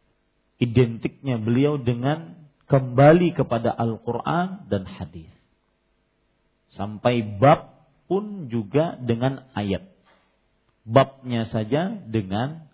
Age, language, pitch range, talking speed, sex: 40-59, Malay, 105-145 Hz, 80 wpm, male